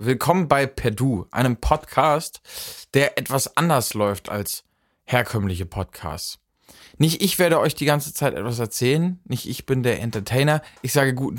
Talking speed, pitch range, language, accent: 155 wpm, 105-145 Hz, German, German